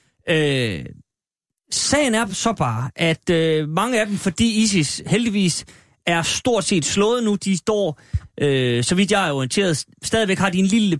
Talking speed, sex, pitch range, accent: 170 wpm, male, 135-195 Hz, native